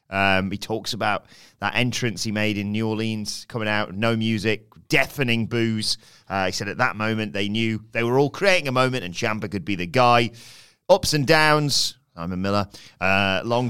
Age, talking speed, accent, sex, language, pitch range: 30-49, 195 wpm, British, male, English, 105-130 Hz